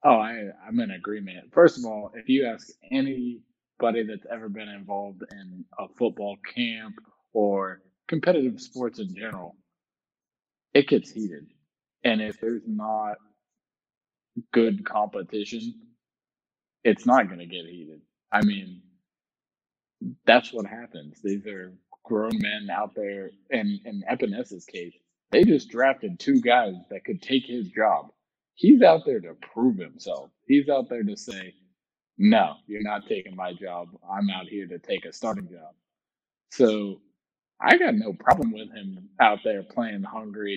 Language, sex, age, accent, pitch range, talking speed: English, male, 20-39, American, 100-135 Hz, 150 wpm